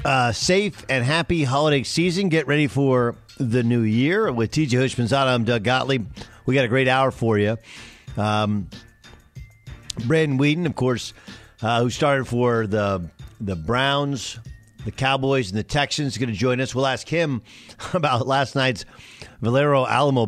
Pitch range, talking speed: 115-145 Hz, 165 wpm